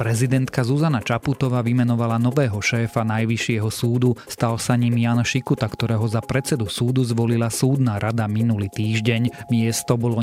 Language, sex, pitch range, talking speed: Slovak, male, 110-130 Hz, 140 wpm